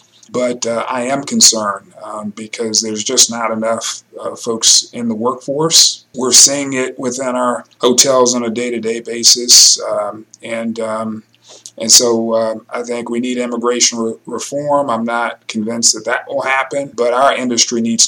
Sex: male